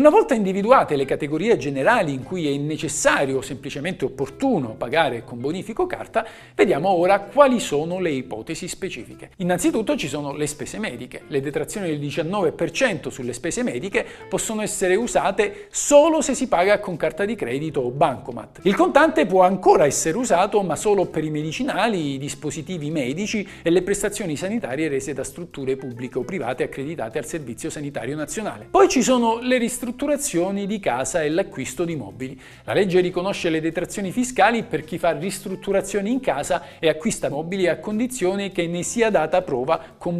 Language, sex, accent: Italian, male, native